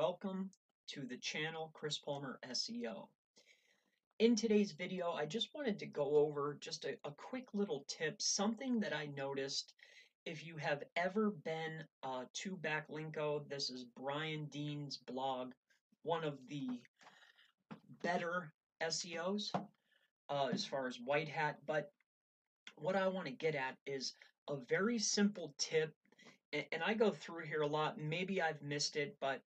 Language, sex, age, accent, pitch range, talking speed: English, male, 30-49, American, 145-200 Hz, 150 wpm